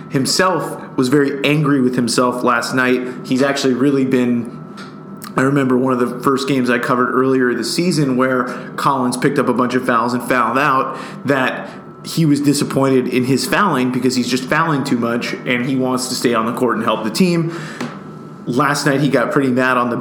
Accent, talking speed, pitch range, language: American, 205 wpm, 125-145 Hz, English